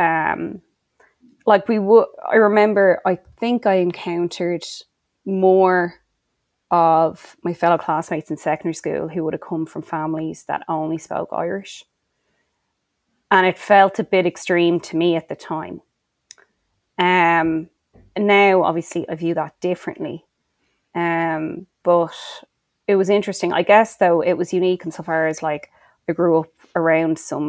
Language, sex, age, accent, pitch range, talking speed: English, female, 20-39, Irish, 160-185 Hz, 145 wpm